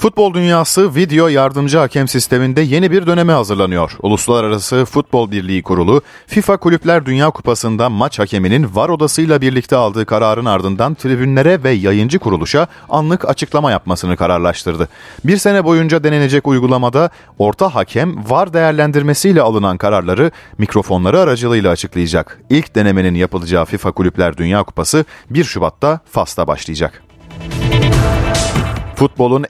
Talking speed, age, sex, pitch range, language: 120 wpm, 40-59, male, 95-145 Hz, Turkish